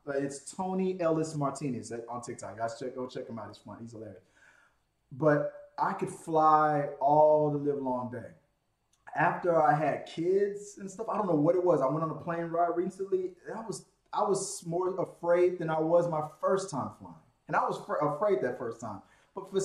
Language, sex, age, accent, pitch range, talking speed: English, male, 20-39, American, 130-180 Hz, 205 wpm